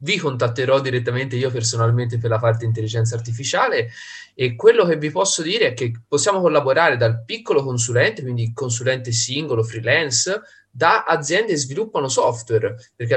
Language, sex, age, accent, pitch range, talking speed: Italian, male, 20-39, native, 120-160 Hz, 150 wpm